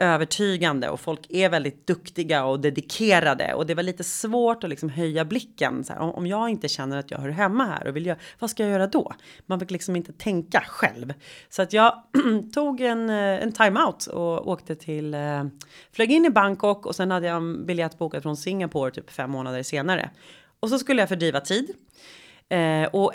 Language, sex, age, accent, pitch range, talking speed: Swedish, female, 30-49, native, 165-230 Hz, 195 wpm